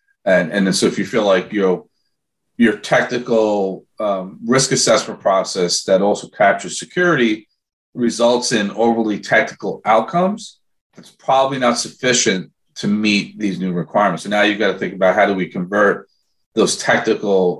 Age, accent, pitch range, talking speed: 40-59, American, 100-125 Hz, 155 wpm